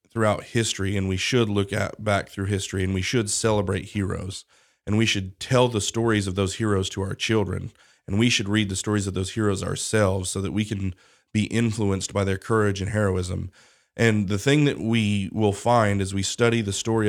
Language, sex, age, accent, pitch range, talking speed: English, male, 30-49, American, 95-110 Hz, 210 wpm